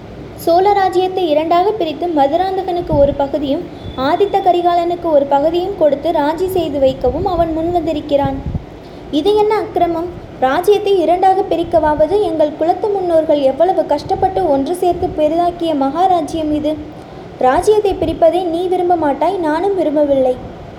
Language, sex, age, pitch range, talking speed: Tamil, female, 20-39, 300-370 Hz, 115 wpm